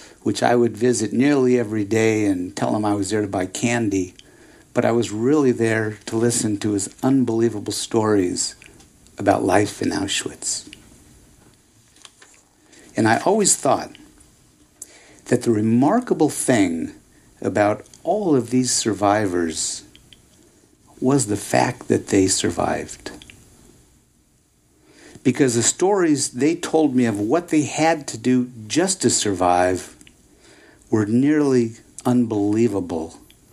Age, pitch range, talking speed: 60-79, 105-125 Hz, 120 wpm